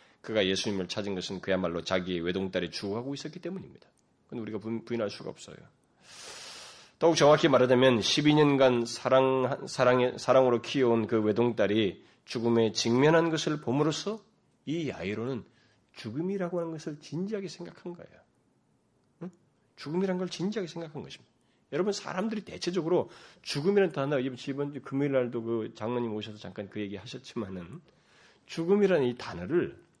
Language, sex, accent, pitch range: Korean, male, native, 120-175 Hz